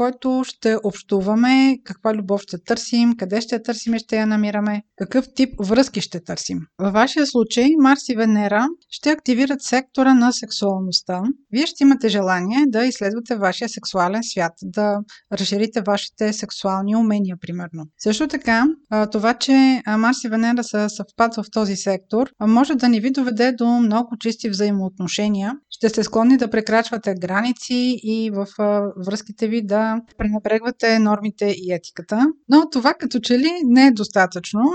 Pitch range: 205-245 Hz